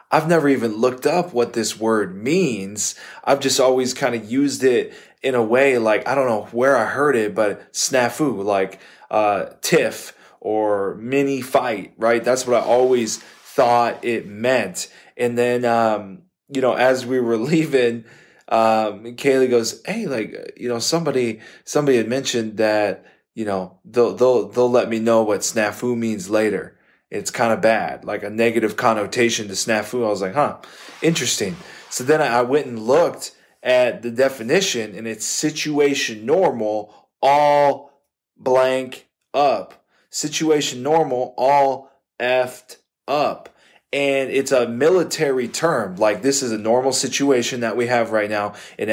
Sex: male